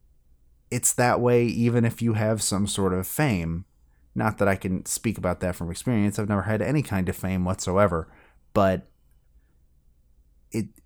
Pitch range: 85-115 Hz